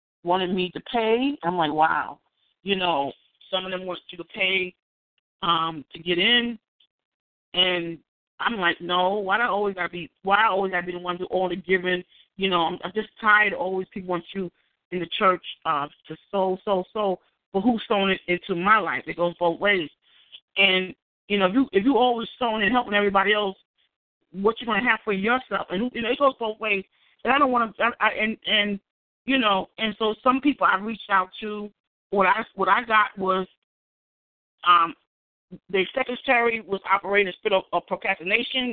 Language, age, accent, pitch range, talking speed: English, 40-59, American, 180-220 Hz, 205 wpm